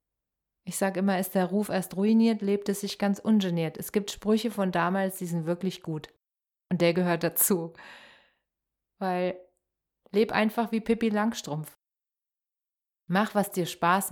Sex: female